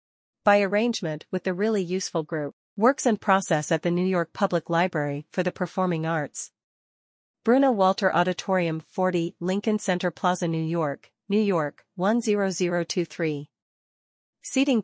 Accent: American